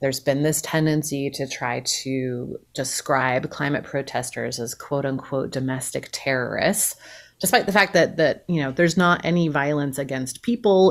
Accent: American